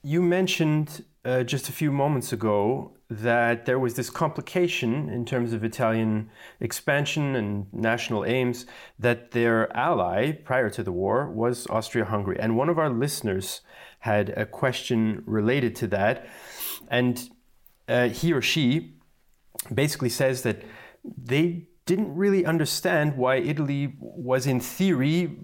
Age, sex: 30-49, male